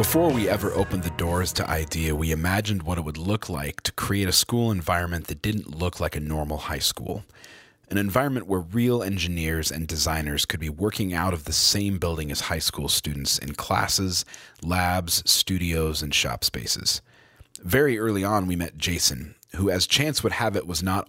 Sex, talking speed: male, 195 wpm